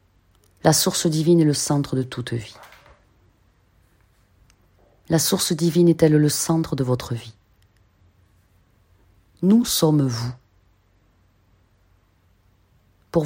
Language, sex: French, female